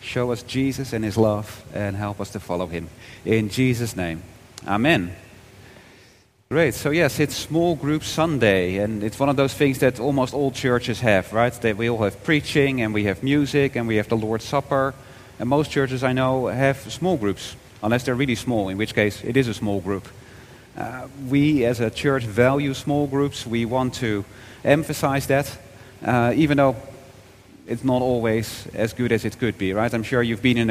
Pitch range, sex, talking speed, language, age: 110-135 Hz, male, 195 wpm, English, 40-59